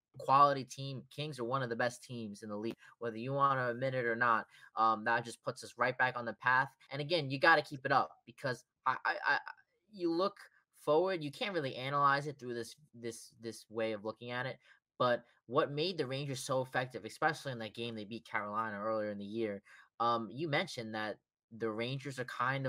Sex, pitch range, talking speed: male, 115-155 Hz, 225 wpm